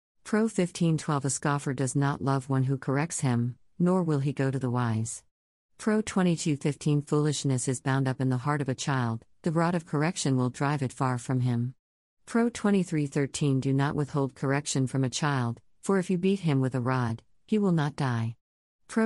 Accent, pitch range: American, 130-165 Hz